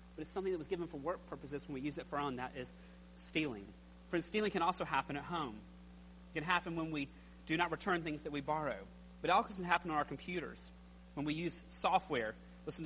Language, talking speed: English, 240 wpm